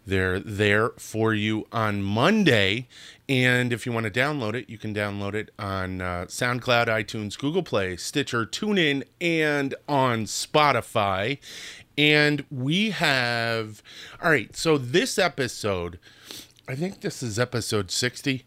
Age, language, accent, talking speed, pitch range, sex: 30-49, English, American, 135 wpm, 100-125 Hz, male